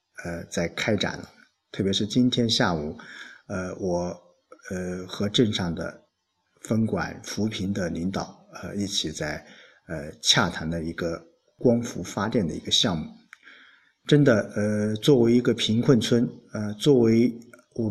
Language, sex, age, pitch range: Chinese, male, 50-69, 95-125 Hz